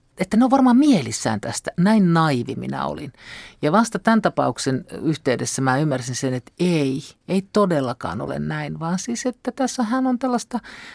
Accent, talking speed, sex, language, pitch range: native, 170 wpm, male, Finnish, 130-190 Hz